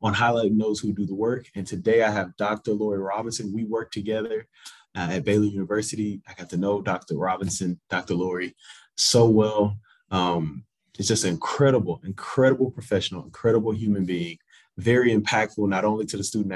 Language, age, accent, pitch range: English, 20-39, American, 100-120 Hz